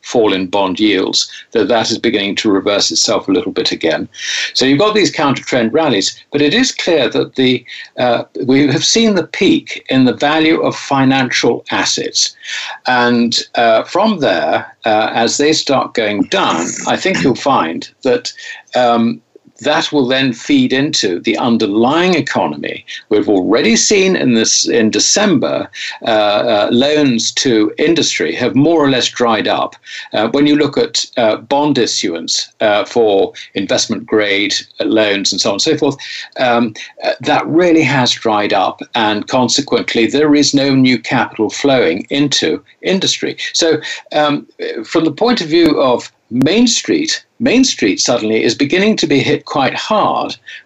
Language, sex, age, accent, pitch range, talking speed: English, male, 60-79, British, 120-190 Hz, 160 wpm